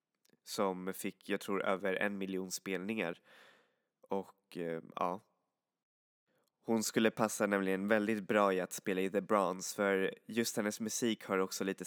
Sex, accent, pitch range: male, native, 95-110 Hz